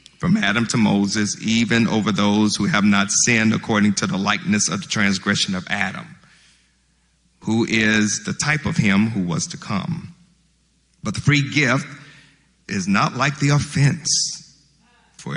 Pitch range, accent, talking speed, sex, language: 115-170 Hz, American, 155 wpm, male, English